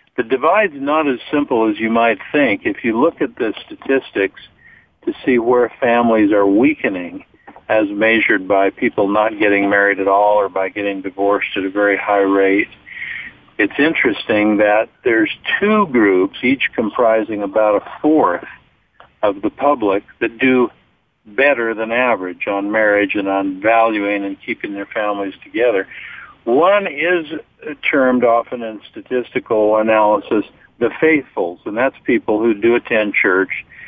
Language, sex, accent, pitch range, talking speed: English, male, American, 100-130 Hz, 150 wpm